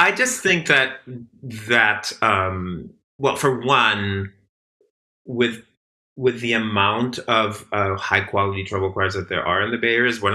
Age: 30-49